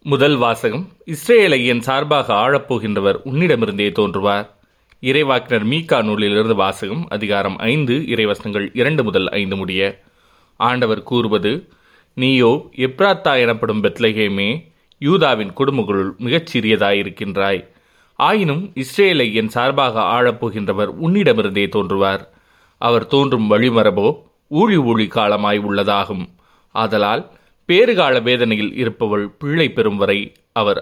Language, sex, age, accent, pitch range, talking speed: Tamil, male, 30-49, native, 100-135 Hz, 95 wpm